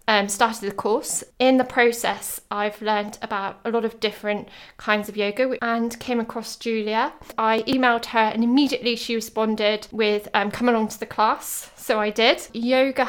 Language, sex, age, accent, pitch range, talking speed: English, female, 20-39, British, 210-235 Hz, 180 wpm